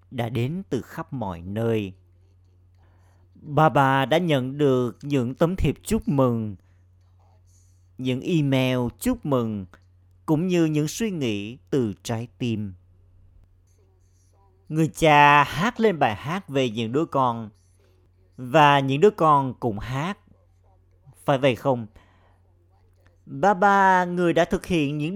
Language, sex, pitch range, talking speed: Vietnamese, male, 90-150 Hz, 130 wpm